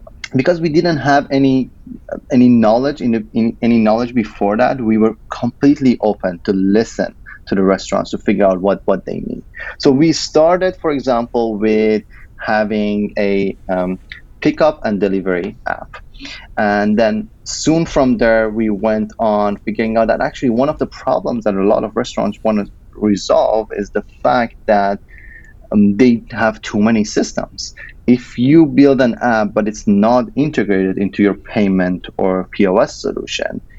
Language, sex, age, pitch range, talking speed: English, male, 30-49, 100-125 Hz, 165 wpm